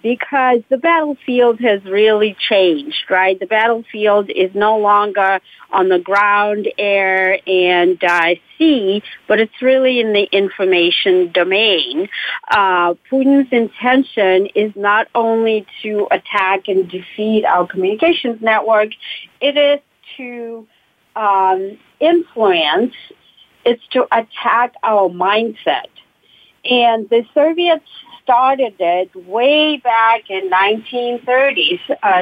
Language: English